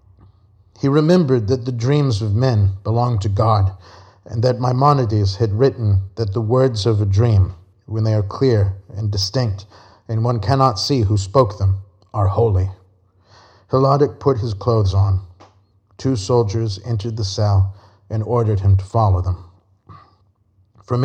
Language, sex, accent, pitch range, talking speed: English, male, American, 95-115 Hz, 150 wpm